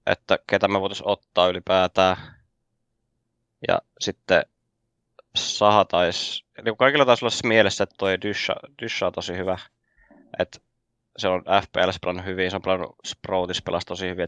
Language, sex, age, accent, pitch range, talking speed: Finnish, male, 20-39, native, 90-115 Hz, 145 wpm